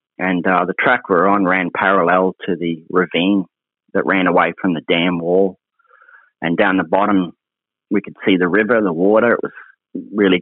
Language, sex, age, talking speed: English, male, 30-49, 185 wpm